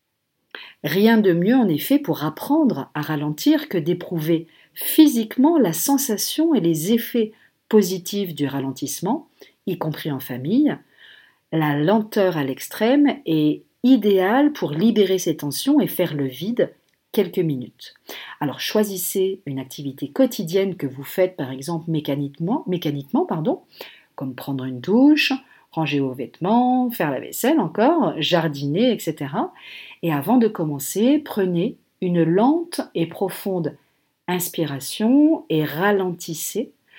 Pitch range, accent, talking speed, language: 155-240 Hz, French, 125 wpm, French